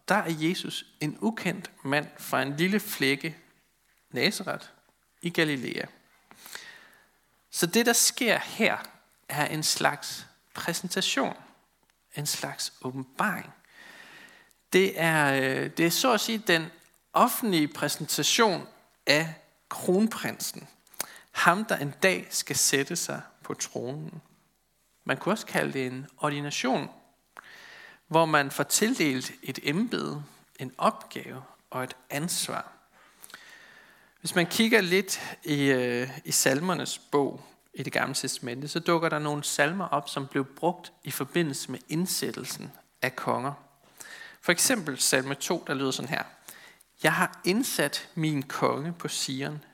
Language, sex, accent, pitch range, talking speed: Danish, male, native, 140-185 Hz, 130 wpm